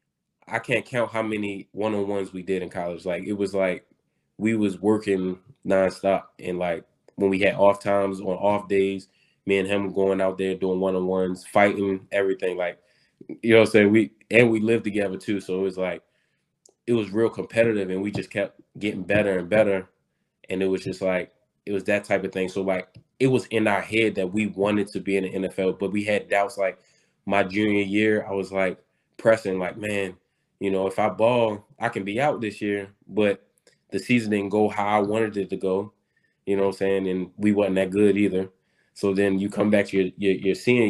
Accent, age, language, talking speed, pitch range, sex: American, 20-39, English, 220 wpm, 95-105 Hz, male